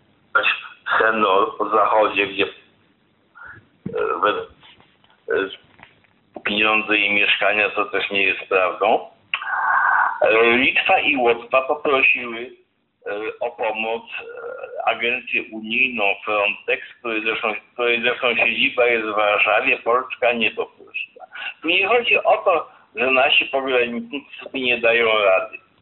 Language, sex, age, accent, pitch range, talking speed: English, male, 50-69, Polish, 115-165 Hz, 115 wpm